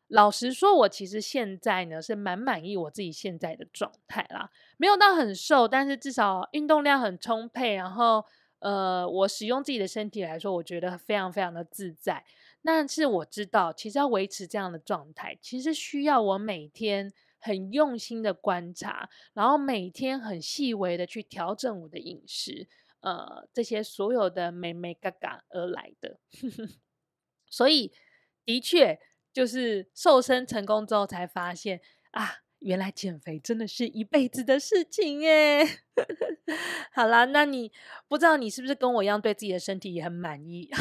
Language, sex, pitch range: Chinese, female, 195-295 Hz